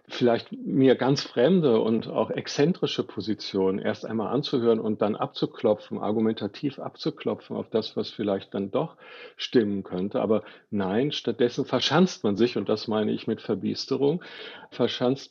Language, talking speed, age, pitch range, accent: German, 145 wpm, 50-69, 105-130 Hz, German